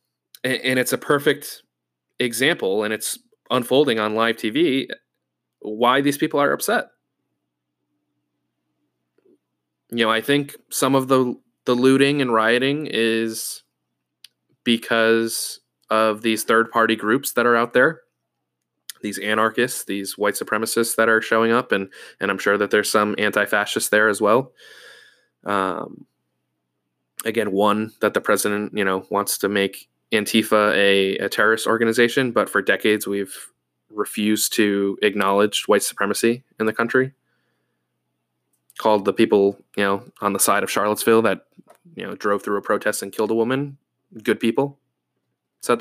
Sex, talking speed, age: male, 145 wpm, 20-39